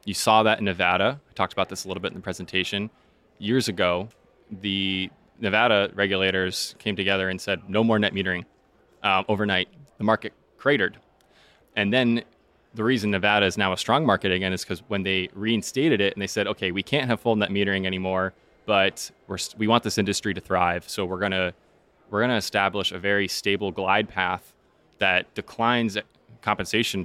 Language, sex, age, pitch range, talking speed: English, male, 20-39, 95-110 Hz, 185 wpm